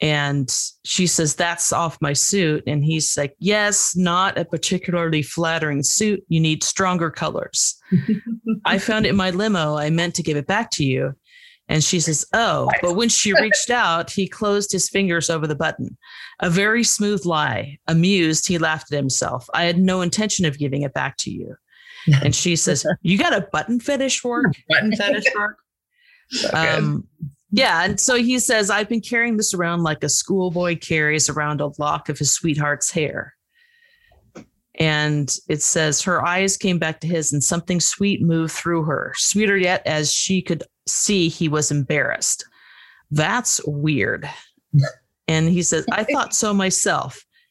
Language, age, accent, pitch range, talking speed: English, 40-59, American, 155-200 Hz, 170 wpm